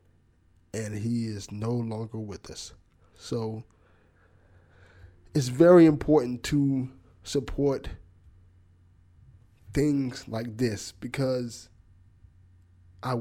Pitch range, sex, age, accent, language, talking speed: 90-125 Hz, male, 20-39, American, English, 80 wpm